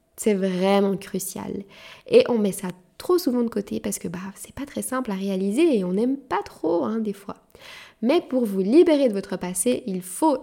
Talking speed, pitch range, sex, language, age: 215 wpm, 195-255 Hz, female, French, 10-29